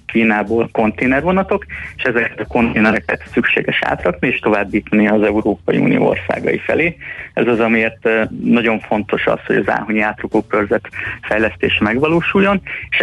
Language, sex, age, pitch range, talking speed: Hungarian, male, 30-49, 110-135 Hz, 130 wpm